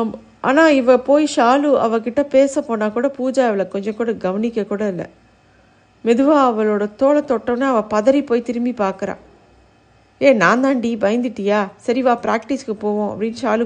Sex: female